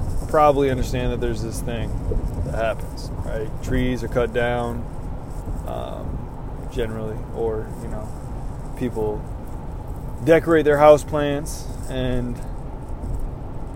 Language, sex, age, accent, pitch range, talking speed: English, male, 20-39, American, 115-135 Hz, 105 wpm